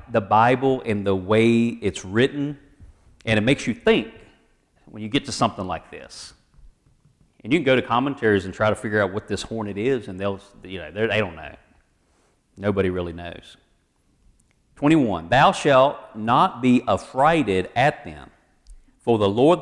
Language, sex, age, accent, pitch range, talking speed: English, male, 40-59, American, 100-135 Hz, 170 wpm